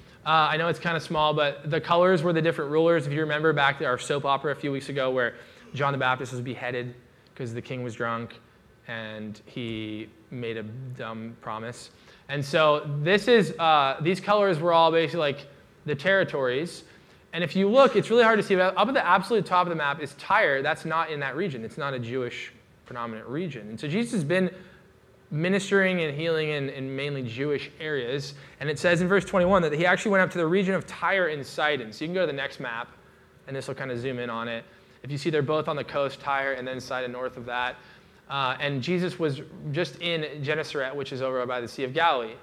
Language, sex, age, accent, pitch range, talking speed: English, male, 20-39, American, 130-170 Hz, 230 wpm